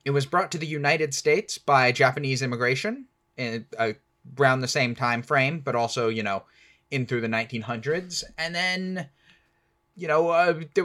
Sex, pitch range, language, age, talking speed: male, 130-175 Hz, English, 10-29, 170 wpm